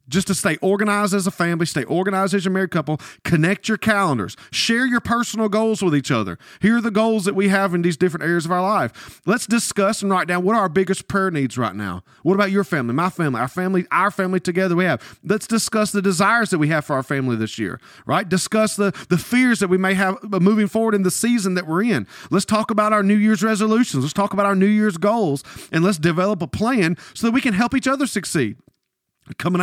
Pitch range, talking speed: 165-215 Hz, 245 wpm